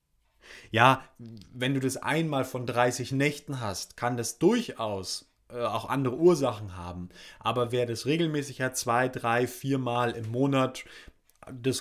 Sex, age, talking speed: male, 30-49, 135 wpm